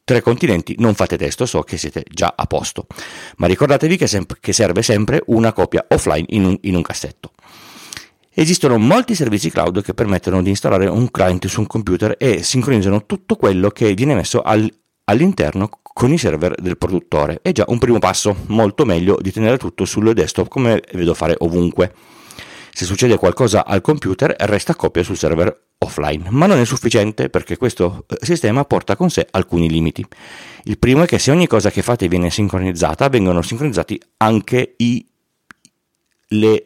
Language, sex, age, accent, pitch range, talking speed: Italian, male, 40-59, native, 90-120 Hz, 165 wpm